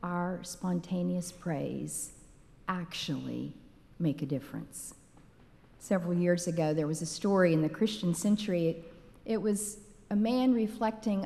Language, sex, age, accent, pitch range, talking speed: English, female, 50-69, American, 175-230 Hz, 125 wpm